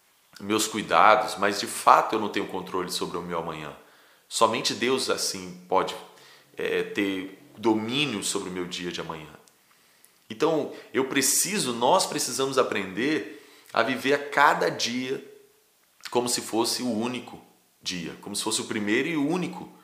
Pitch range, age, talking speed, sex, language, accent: 95-145 Hz, 30-49, 150 wpm, male, Portuguese, Brazilian